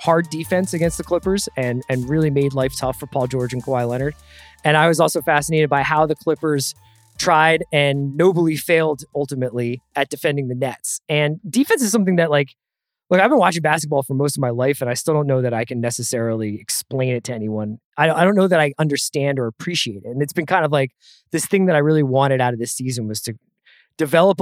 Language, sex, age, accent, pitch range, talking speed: English, male, 20-39, American, 130-170 Hz, 230 wpm